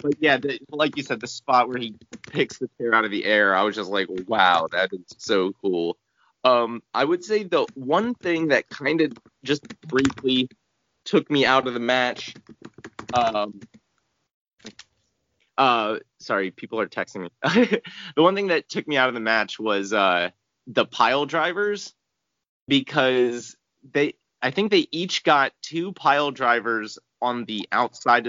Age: 30-49